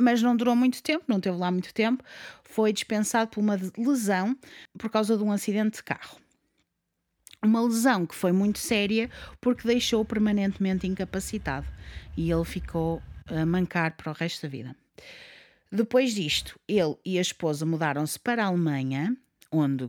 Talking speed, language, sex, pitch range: 160 wpm, Portuguese, female, 175-245 Hz